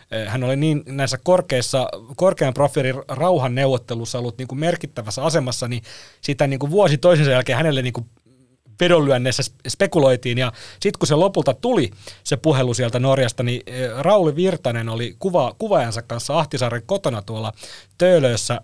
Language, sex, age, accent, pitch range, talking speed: Finnish, male, 30-49, native, 125-170 Hz, 135 wpm